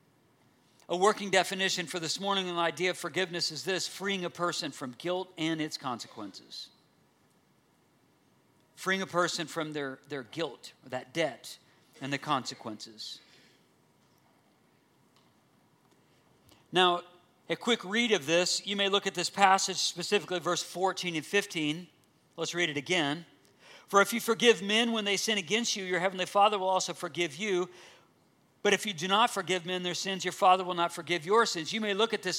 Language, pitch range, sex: English, 175-205 Hz, male